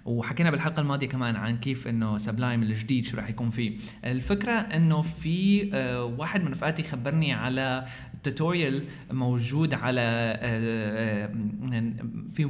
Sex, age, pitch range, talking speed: male, 20-39, 120-165 Hz, 120 wpm